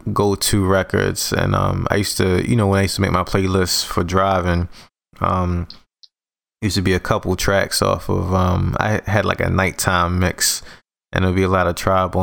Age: 20-39